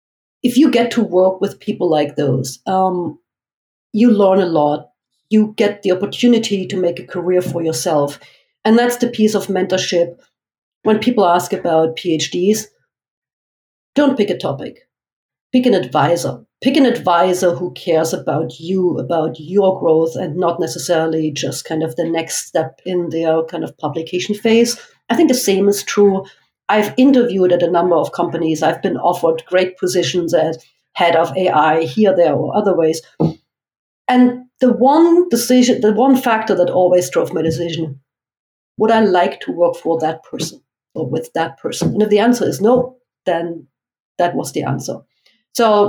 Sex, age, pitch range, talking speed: female, 50-69, 165-215 Hz, 170 wpm